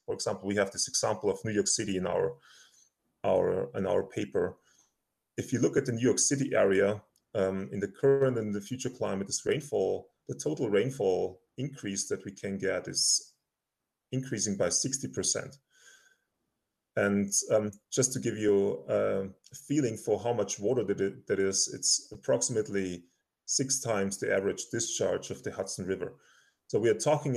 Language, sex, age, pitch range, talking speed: English, male, 30-49, 95-135 Hz, 160 wpm